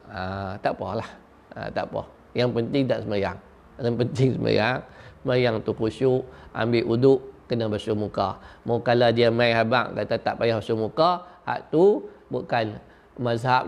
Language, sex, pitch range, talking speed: Malay, male, 115-190 Hz, 140 wpm